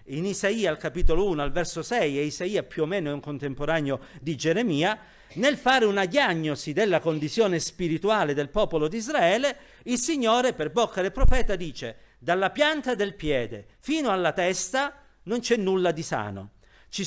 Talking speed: 170 wpm